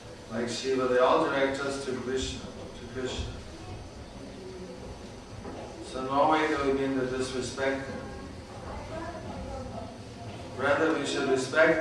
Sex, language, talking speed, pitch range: male, English, 115 wpm, 110-135 Hz